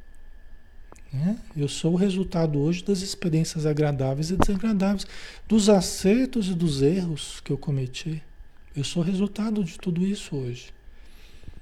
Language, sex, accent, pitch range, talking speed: Portuguese, male, Brazilian, 115-175 Hz, 135 wpm